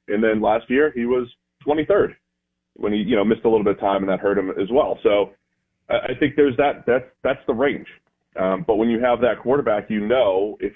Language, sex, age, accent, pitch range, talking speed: English, male, 30-49, American, 95-125 Hz, 235 wpm